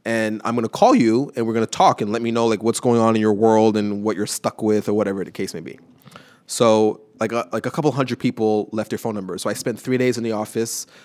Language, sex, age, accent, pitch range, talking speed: English, male, 20-39, American, 110-130 Hz, 280 wpm